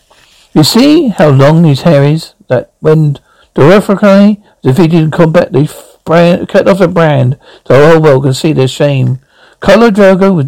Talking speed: 180 wpm